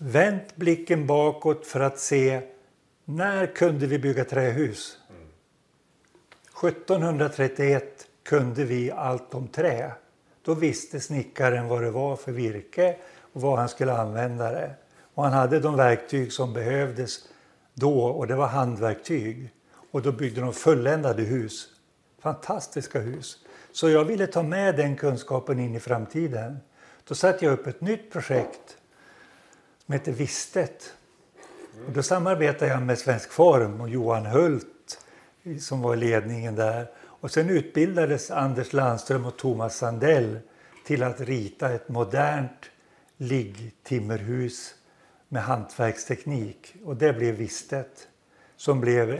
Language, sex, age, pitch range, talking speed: Swedish, male, 60-79, 125-155 Hz, 130 wpm